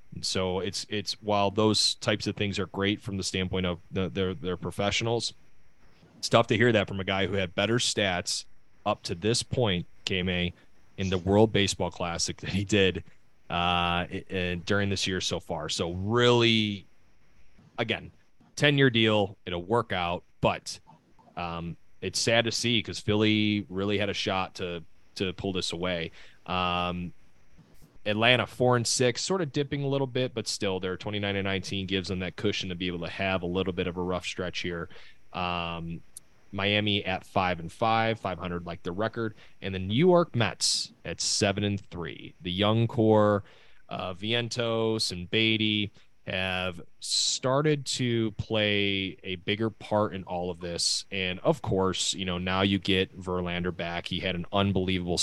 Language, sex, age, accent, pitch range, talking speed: English, male, 30-49, American, 90-110 Hz, 175 wpm